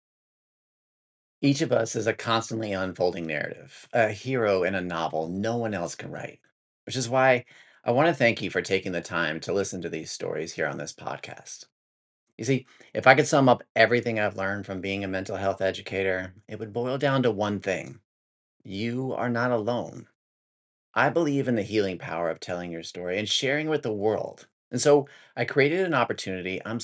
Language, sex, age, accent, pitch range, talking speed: English, male, 30-49, American, 95-130 Hz, 195 wpm